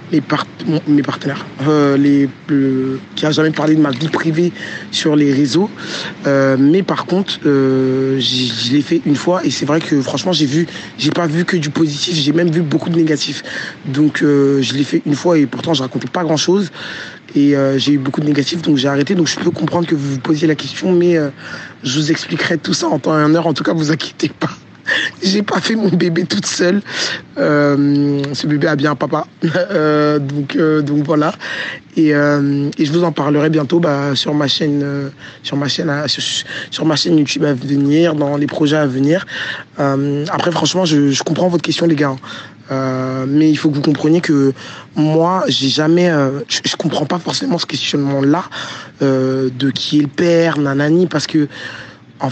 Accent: French